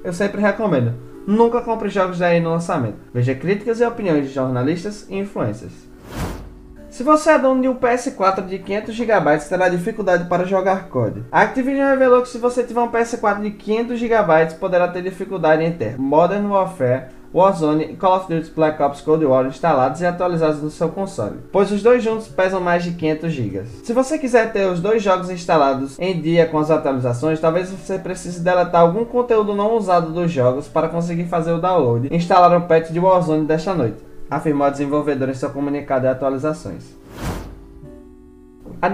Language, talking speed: Portuguese, 185 wpm